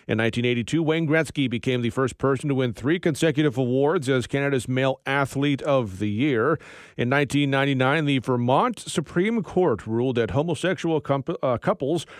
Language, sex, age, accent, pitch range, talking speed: English, male, 40-59, American, 125-155 Hz, 150 wpm